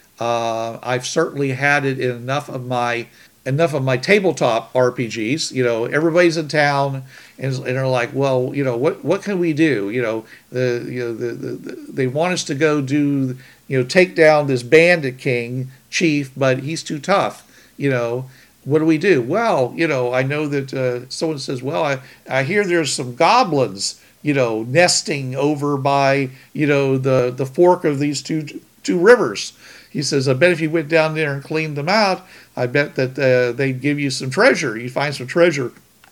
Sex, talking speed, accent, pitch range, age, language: male, 200 wpm, American, 125-150 Hz, 50-69, English